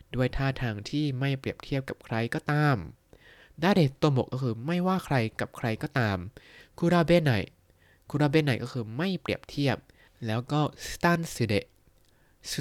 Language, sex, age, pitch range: Thai, male, 20-39, 115-155 Hz